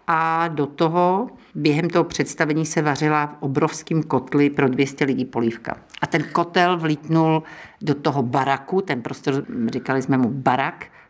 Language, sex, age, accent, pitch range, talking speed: Czech, female, 50-69, native, 140-155 Hz, 150 wpm